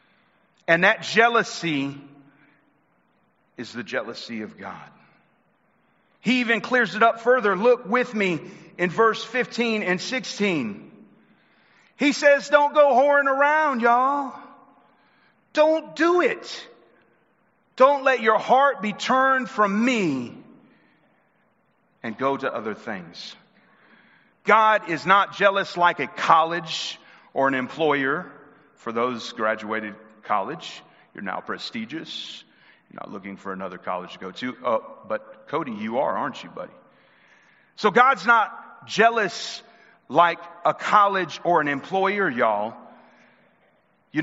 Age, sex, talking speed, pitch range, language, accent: 40-59, male, 125 wpm, 155-230 Hz, English, American